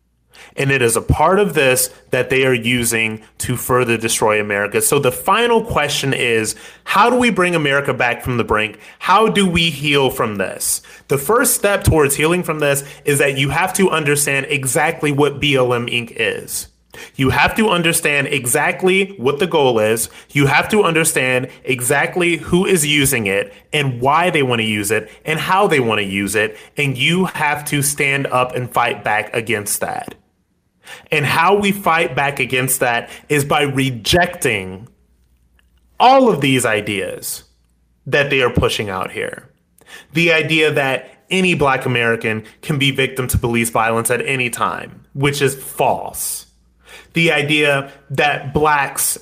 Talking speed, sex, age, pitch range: 170 wpm, male, 30-49, 115-155 Hz